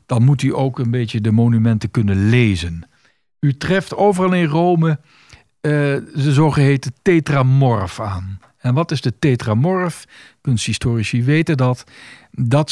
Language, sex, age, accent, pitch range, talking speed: Dutch, male, 50-69, Dutch, 110-150 Hz, 135 wpm